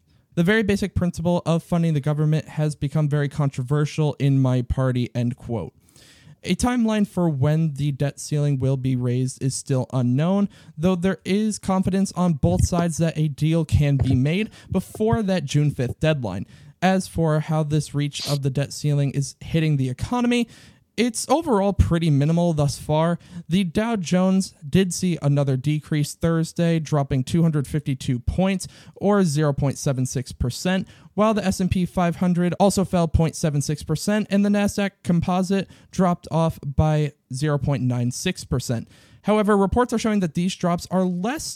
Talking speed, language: 150 wpm, English